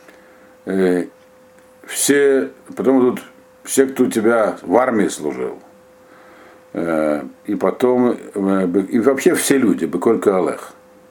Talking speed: 115 wpm